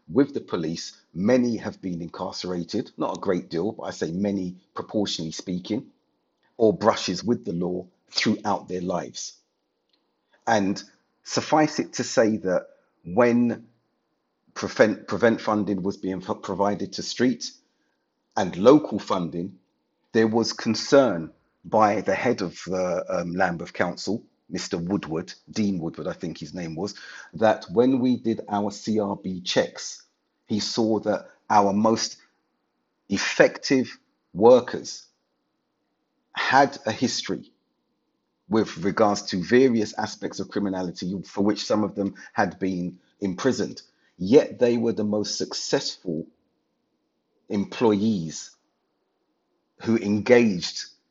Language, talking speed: English, 120 wpm